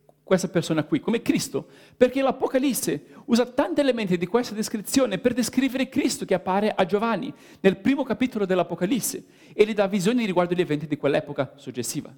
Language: Italian